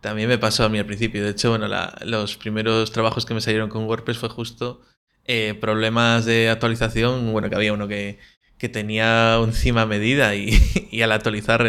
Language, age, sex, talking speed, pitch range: Spanish, 20-39, male, 195 wpm, 110-125 Hz